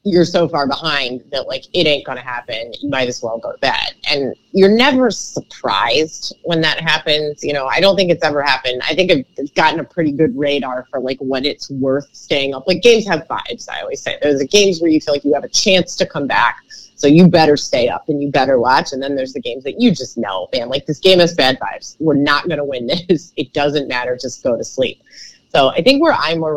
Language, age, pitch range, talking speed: English, 30-49, 140-185 Hz, 250 wpm